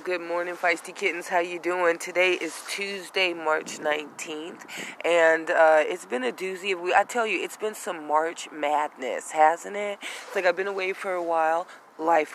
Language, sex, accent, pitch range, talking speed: English, female, American, 155-200 Hz, 180 wpm